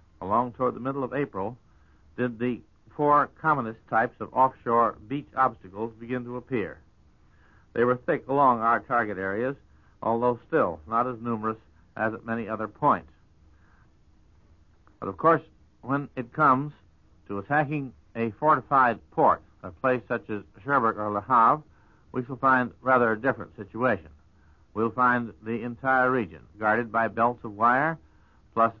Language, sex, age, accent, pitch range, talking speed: English, male, 60-79, American, 100-125 Hz, 150 wpm